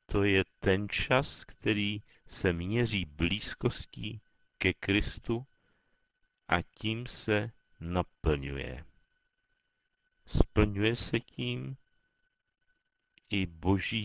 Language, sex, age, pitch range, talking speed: Czech, male, 50-69, 85-140 Hz, 80 wpm